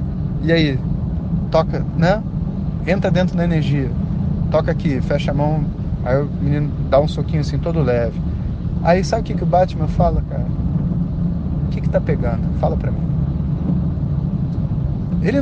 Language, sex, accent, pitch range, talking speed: Portuguese, male, Brazilian, 140-165 Hz, 155 wpm